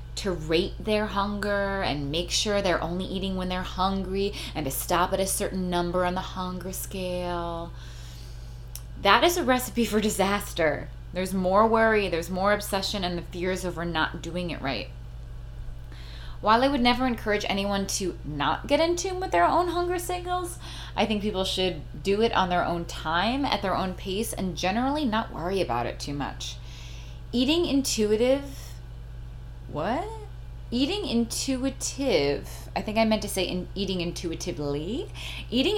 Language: English